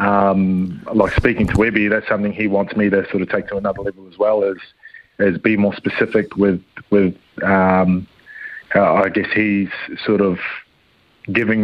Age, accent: 30-49, Australian